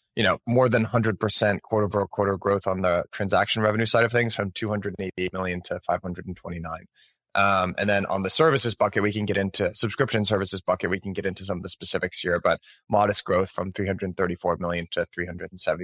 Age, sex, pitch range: 20-39, male, 95-110 Hz